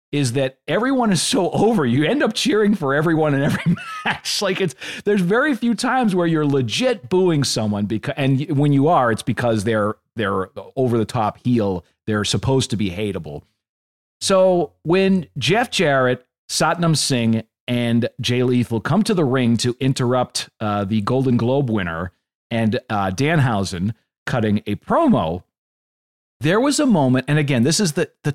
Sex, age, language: male, 40-59, English